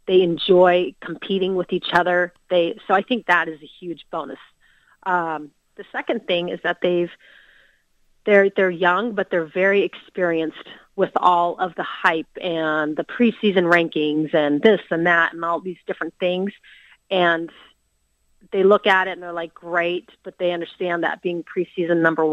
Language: English